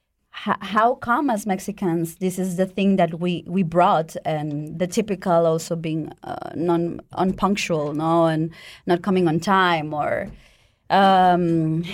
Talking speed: 140 wpm